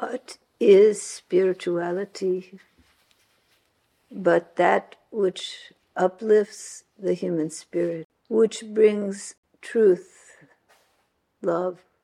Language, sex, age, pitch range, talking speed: English, female, 60-79, 180-230 Hz, 70 wpm